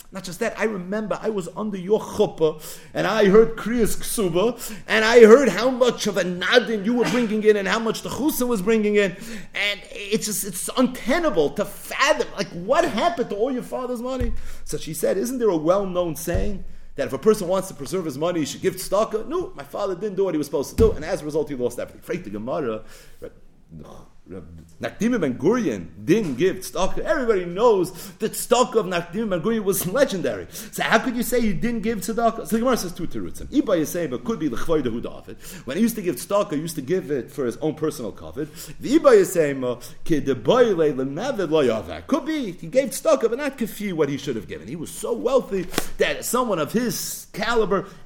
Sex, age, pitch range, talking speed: male, 40-59, 180-230 Hz, 205 wpm